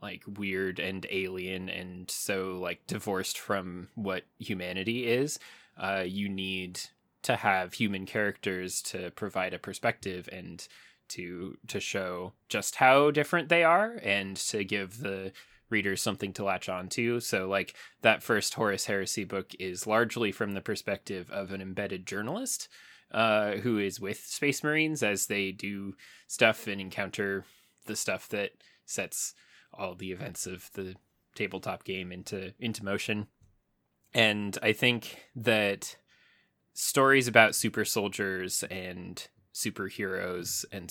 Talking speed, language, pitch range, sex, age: 140 wpm, English, 95-110 Hz, male, 20-39